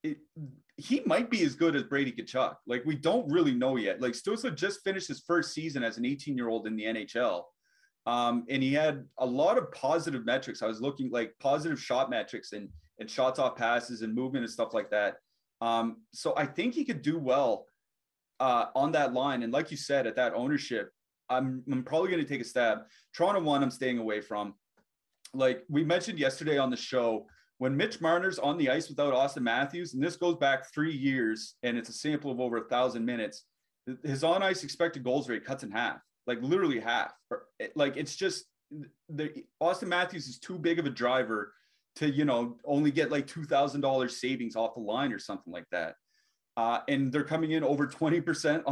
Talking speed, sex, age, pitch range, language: 205 wpm, male, 30-49, 125-165 Hz, English